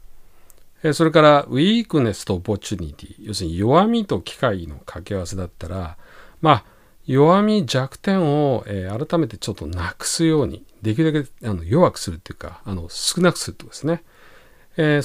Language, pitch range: Japanese, 95-155 Hz